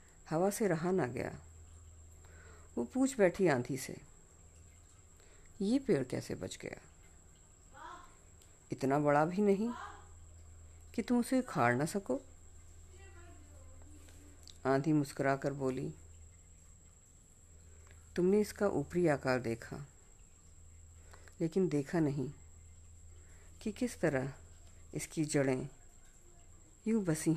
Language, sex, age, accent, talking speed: Hindi, female, 50-69, native, 95 wpm